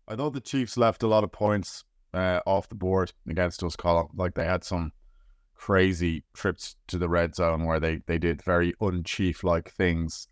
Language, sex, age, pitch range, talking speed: English, male, 30-49, 85-100 Hz, 200 wpm